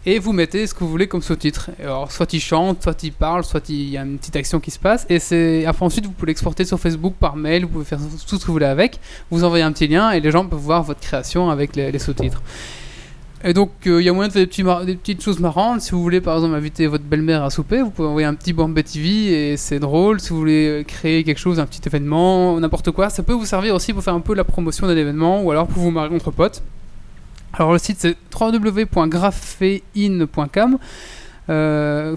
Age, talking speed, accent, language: 20-39, 250 wpm, French, French